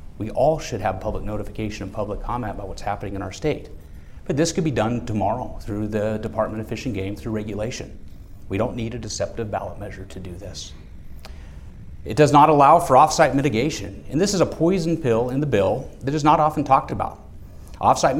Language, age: English, 40-59